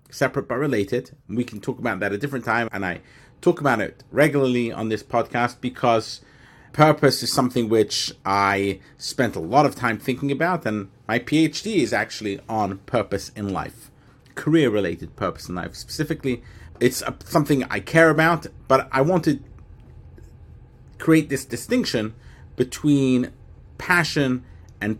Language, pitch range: English, 105-140 Hz